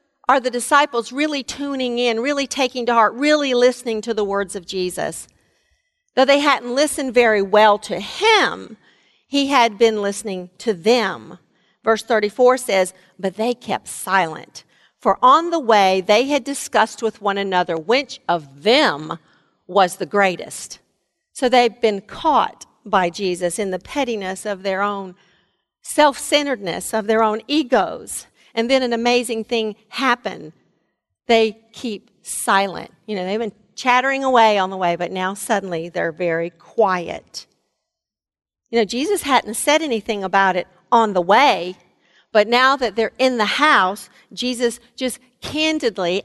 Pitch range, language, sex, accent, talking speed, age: 195-255 Hz, English, female, American, 150 wpm, 50-69